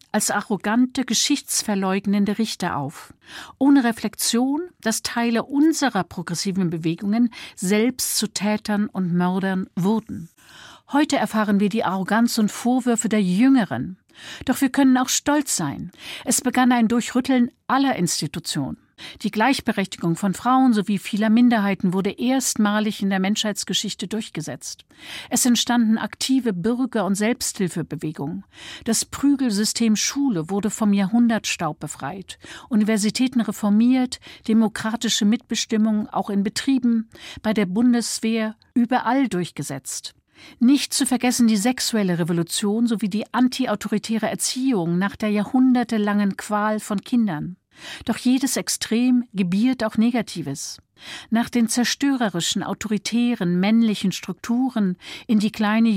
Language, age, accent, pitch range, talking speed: German, 50-69, German, 195-245 Hz, 115 wpm